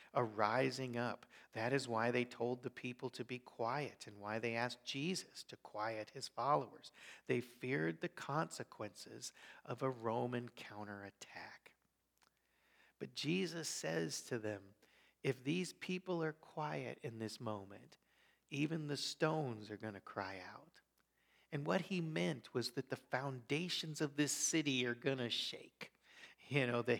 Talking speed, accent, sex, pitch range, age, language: 155 wpm, American, male, 120-170 Hz, 50-69, English